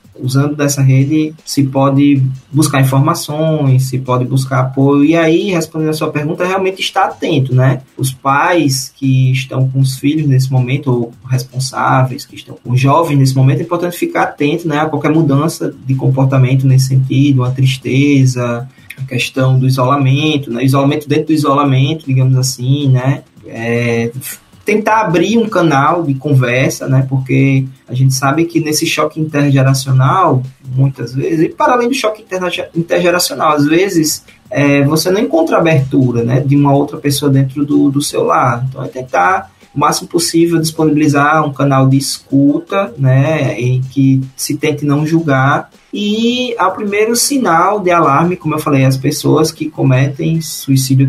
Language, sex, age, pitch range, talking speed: Portuguese, male, 20-39, 130-160 Hz, 160 wpm